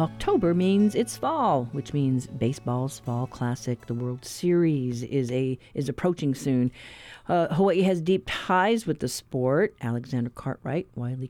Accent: American